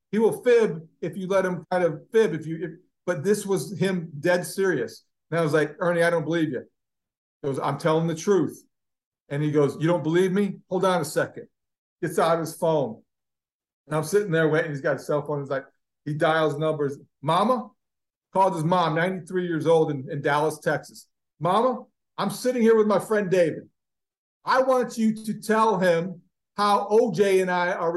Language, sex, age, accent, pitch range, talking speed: English, male, 50-69, American, 160-195 Hz, 205 wpm